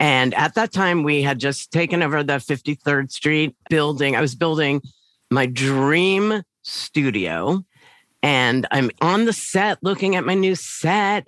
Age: 50-69